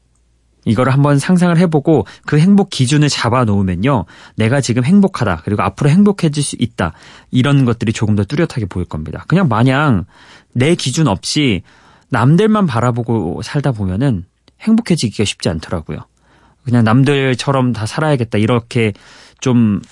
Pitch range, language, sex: 105-155 Hz, Korean, male